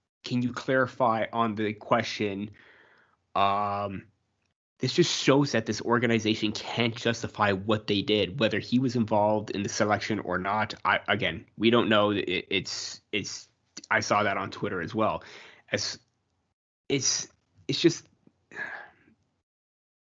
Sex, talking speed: male, 135 wpm